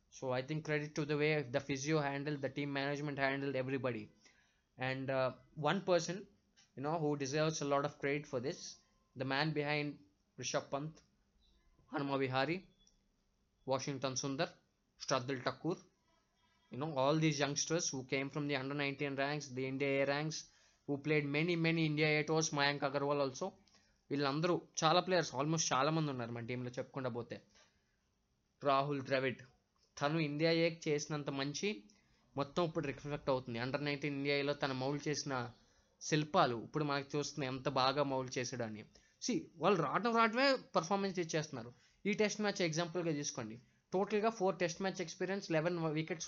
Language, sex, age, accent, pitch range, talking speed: Telugu, male, 20-39, native, 135-175 Hz, 155 wpm